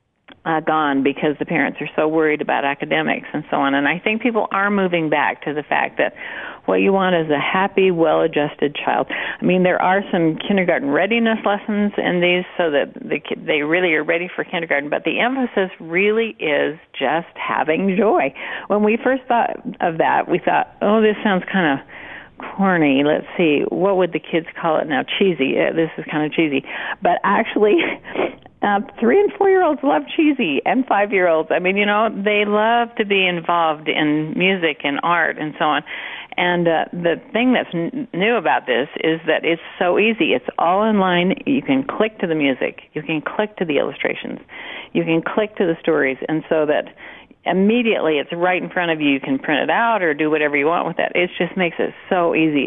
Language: English